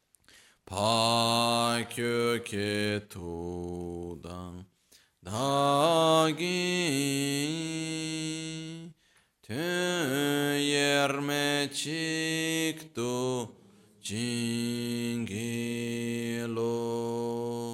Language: Italian